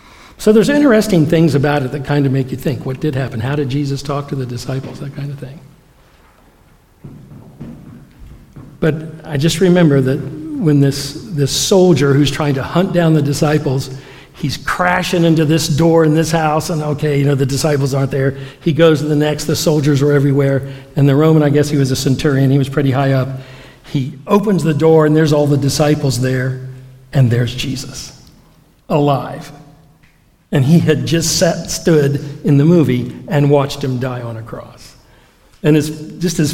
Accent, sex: American, male